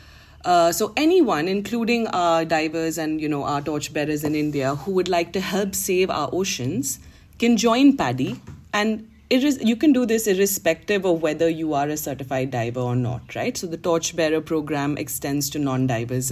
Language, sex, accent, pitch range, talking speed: English, female, Indian, 150-210 Hz, 175 wpm